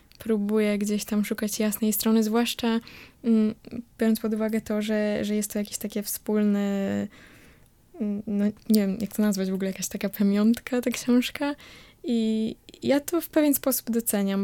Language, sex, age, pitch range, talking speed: Polish, female, 20-39, 210-235 Hz, 155 wpm